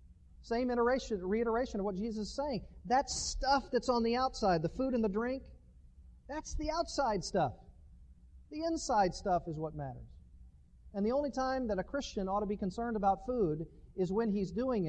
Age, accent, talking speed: 40-59, American, 185 wpm